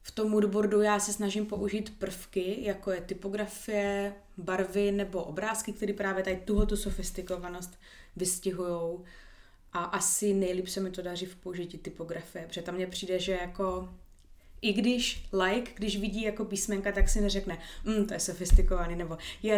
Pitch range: 180-205 Hz